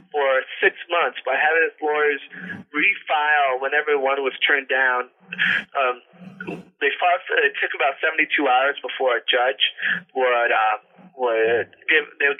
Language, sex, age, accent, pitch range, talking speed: English, male, 30-49, American, 135-175 Hz, 135 wpm